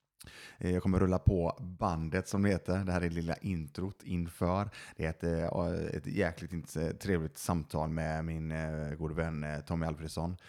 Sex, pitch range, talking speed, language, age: male, 80-100 Hz, 160 wpm, Swedish, 20-39